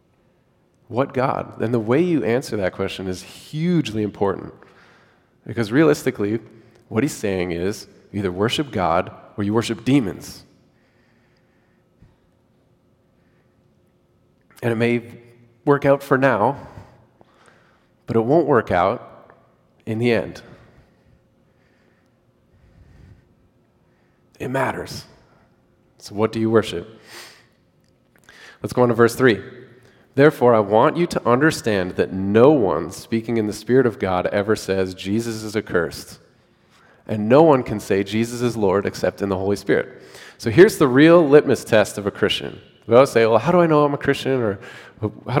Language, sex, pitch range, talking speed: English, male, 105-145 Hz, 145 wpm